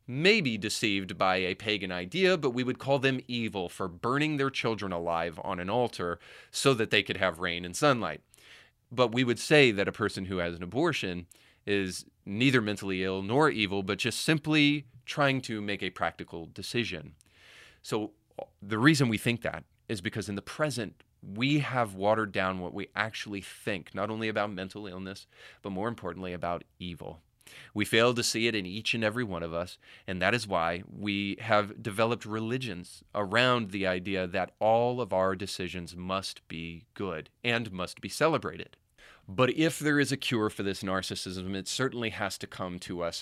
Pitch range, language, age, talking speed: 95-120 Hz, English, 30-49, 185 wpm